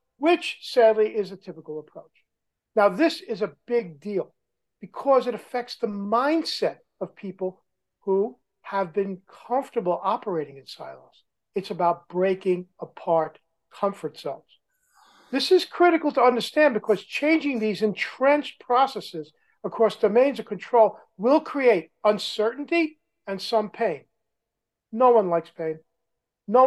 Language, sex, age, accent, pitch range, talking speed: English, male, 50-69, American, 185-245 Hz, 130 wpm